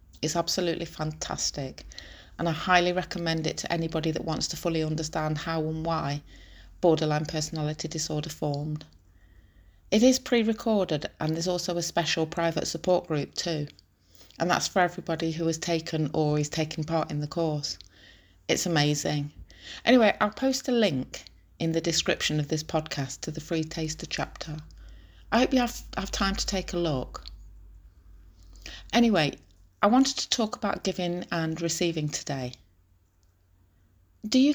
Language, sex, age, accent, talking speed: English, female, 30-49, British, 155 wpm